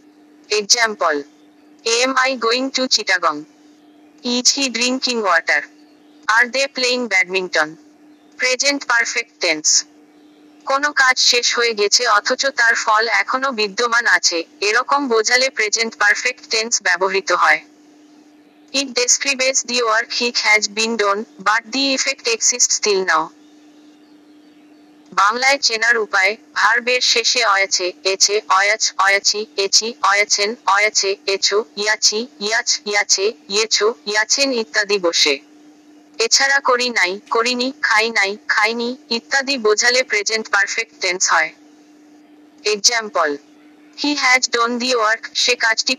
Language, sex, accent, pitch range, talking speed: Bengali, female, native, 210-285 Hz, 85 wpm